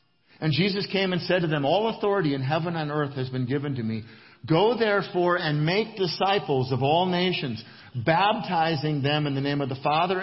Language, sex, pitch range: English, male, 130-155 Hz